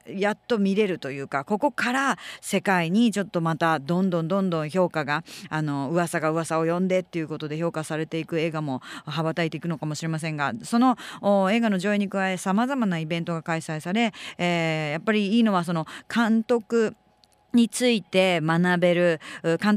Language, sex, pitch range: Japanese, female, 160-205 Hz